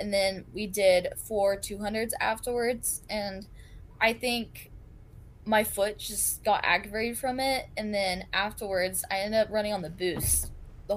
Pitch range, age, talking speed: 175-215 Hz, 10-29, 155 wpm